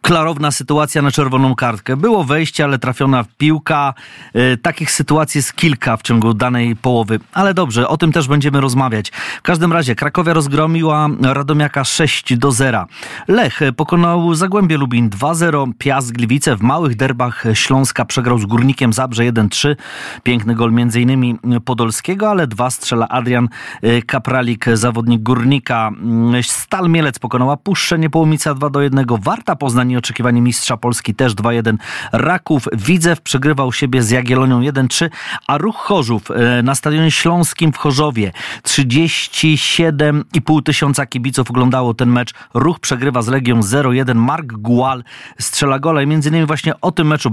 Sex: male